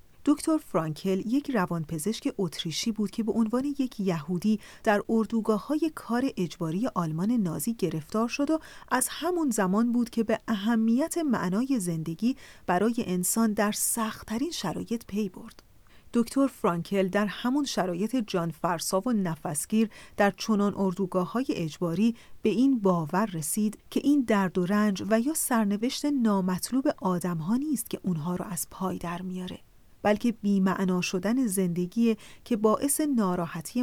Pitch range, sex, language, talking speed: 185-245 Hz, female, Persian, 140 wpm